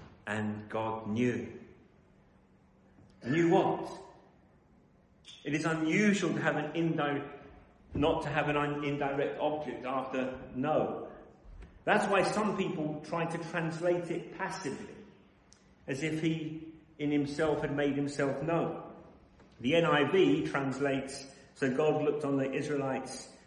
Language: English